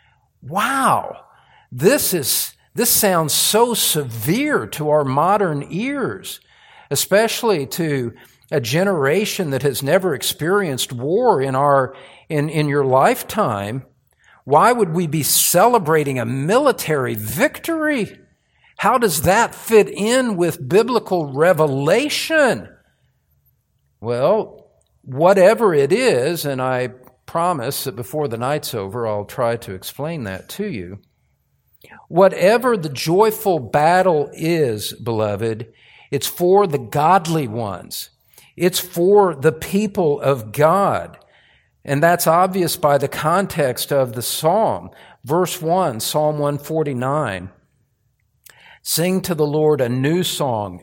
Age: 50-69